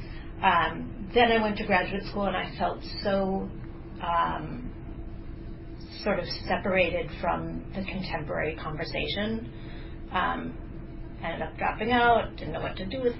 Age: 40-59